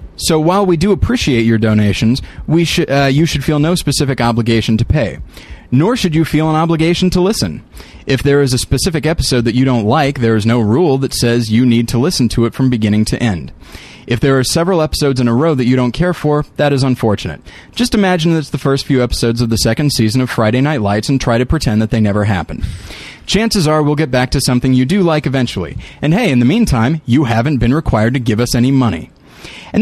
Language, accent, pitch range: English, American, 115-150 Hz